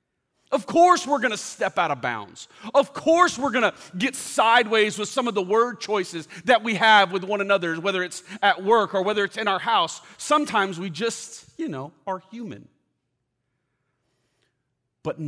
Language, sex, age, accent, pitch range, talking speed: English, male, 40-59, American, 155-225 Hz, 180 wpm